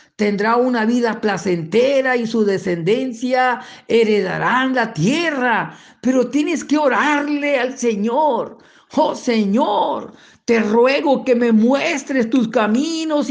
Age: 50-69